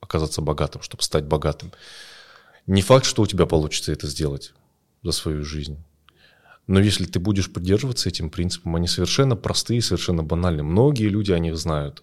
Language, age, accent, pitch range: Russian, 20-39, native, 80-105 Hz